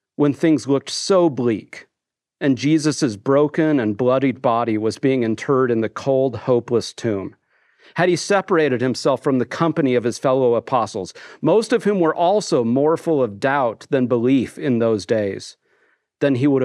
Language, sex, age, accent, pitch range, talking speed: English, male, 40-59, American, 120-155 Hz, 170 wpm